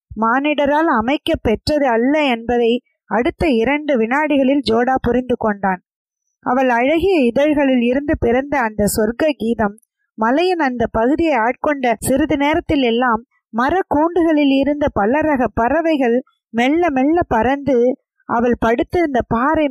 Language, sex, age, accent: Tamil, female, 20-39, native